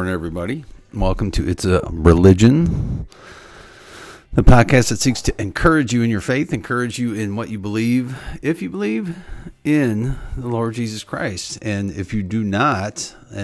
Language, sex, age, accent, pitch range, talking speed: English, male, 50-69, American, 90-115 Hz, 155 wpm